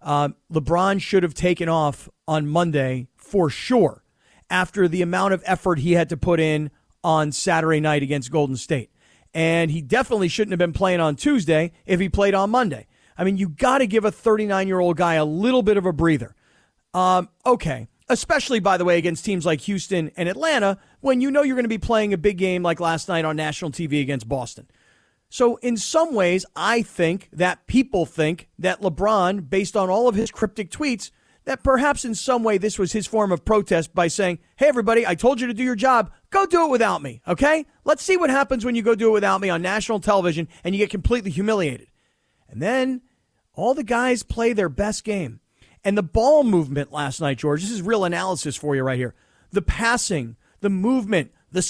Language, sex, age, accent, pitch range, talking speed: English, male, 40-59, American, 165-230 Hz, 210 wpm